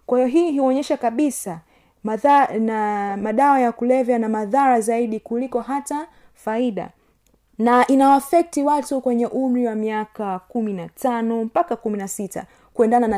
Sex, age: female, 30-49